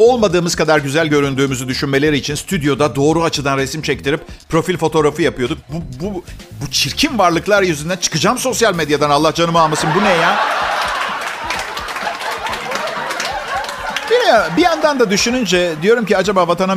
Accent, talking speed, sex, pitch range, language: native, 130 wpm, male, 140-185 Hz, Turkish